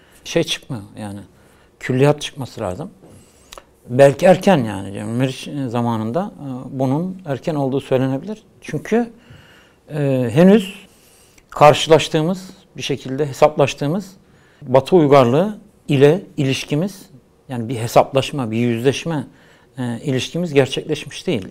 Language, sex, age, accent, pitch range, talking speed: Turkish, male, 60-79, native, 130-175 Hz, 105 wpm